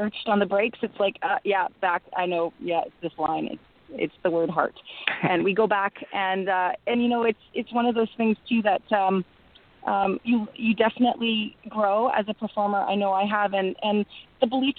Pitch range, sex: 185-220 Hz, female